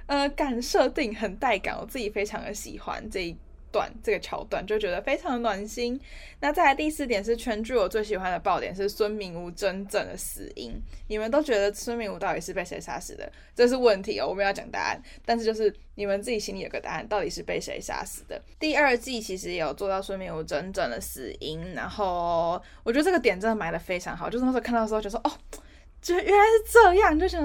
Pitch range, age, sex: 195-250 Hz, 10-29, female